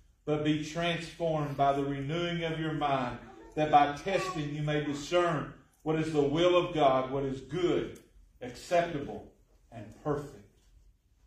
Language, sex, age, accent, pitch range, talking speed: English, male, 40-59, American, 115-155 Hz, 145 wpm